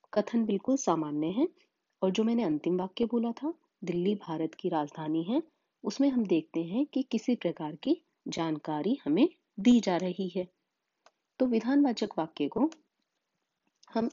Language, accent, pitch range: Hindi, native, 170-275 Hz